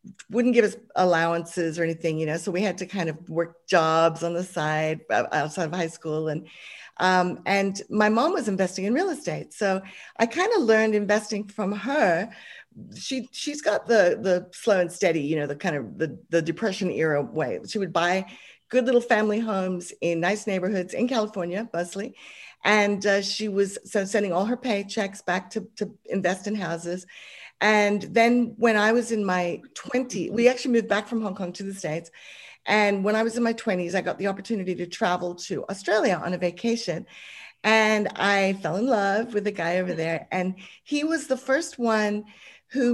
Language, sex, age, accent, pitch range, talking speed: English, female, 50-69, American, 175-220 Hz, 195 wpm